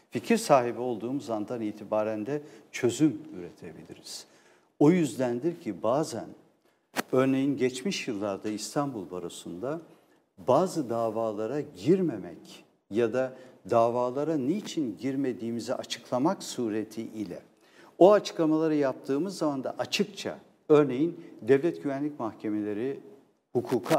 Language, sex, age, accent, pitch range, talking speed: Turkish, male, 60-79, native, 110-150 Hz, 95 wpm